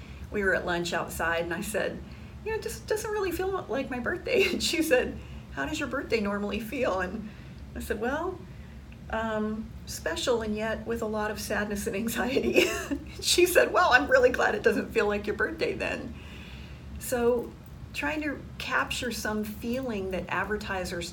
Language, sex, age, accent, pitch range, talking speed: English, female, 40-59, American, 175-245 Hz, 180 wpm